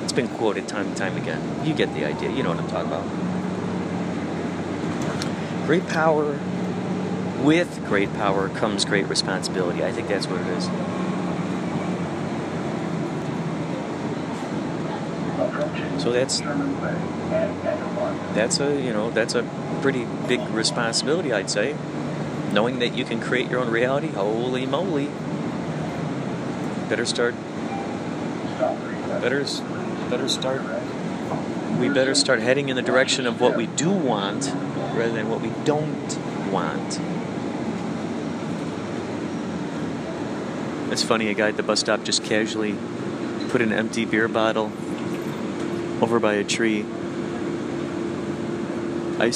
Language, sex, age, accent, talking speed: English, male, 30-49, American, 115 wpm